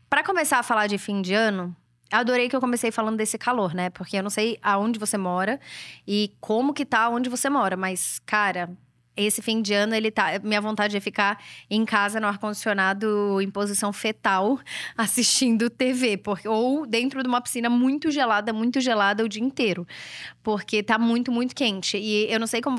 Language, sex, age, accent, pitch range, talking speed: Portuguese, female, 10-29, Brazilian, 195-235 Hz, 195 wpm